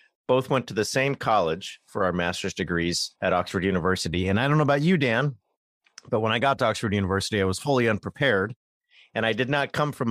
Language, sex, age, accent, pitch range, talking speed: English, male, 40-59, American, 95-120 Hz, 220 wpm